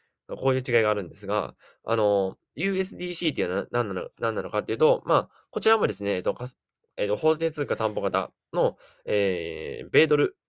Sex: male